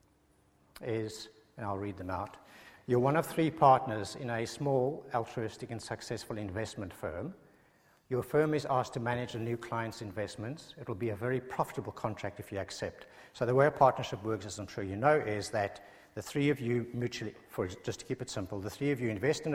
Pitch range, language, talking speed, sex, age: 105-140 Hz, English, 210 wpm, male, 60-79